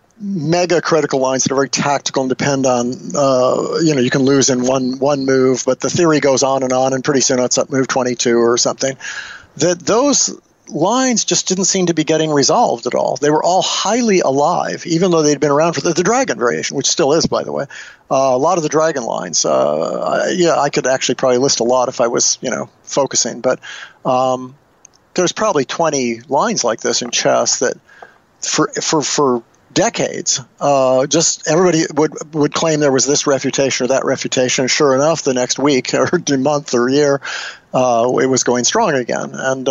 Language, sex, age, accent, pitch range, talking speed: English, male, 50-69, American, 130-165 Hz, 205 wpm